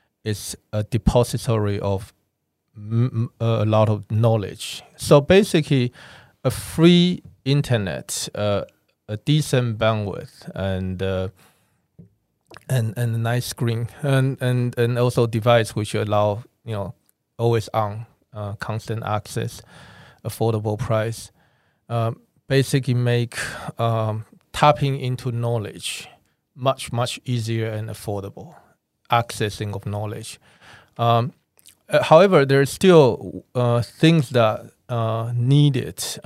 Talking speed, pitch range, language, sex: 110 wpm, 110-125 Hz, English, male